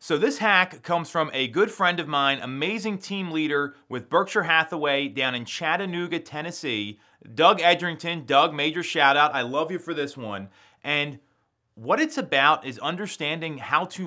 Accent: American